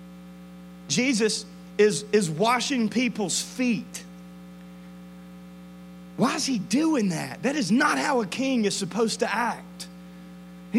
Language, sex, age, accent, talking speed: English, male, 30-49, American, 120 wpm